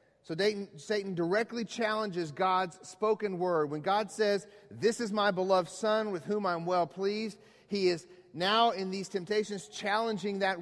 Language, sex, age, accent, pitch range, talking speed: English, male, 40-59, American, 165-215 Hz, 160 wpm